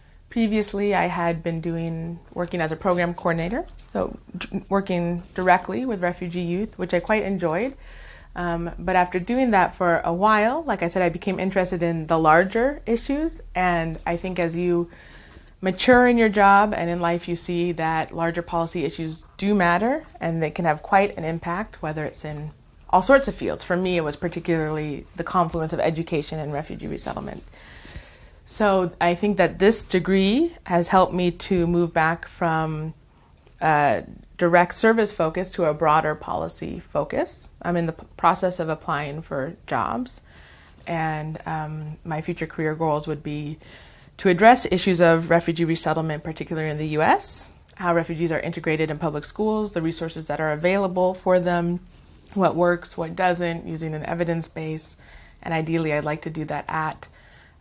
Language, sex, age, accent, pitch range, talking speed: English, female, 20-39, American, 160-185 Hz, 170 wpm